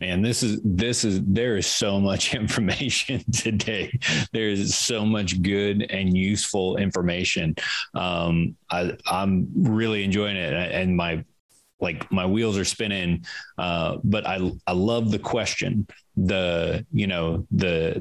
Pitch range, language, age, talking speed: 85-100 Hz, English, 30-49, 140 wpm